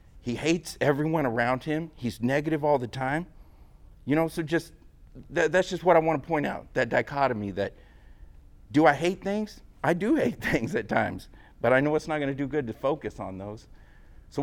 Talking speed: 200 wpm